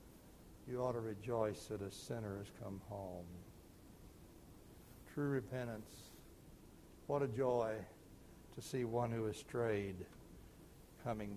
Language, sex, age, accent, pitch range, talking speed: English, male, 60-79, American, 105-145 Hz, 110 wpm